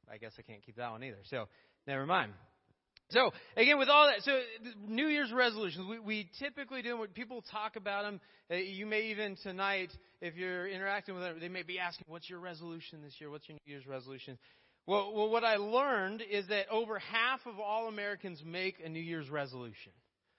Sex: male